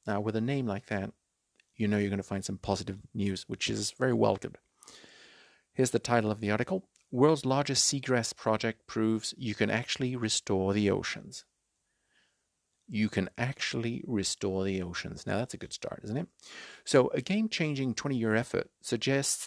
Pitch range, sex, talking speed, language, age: 100-125 Hz, male, 170 wpm, English, 50-69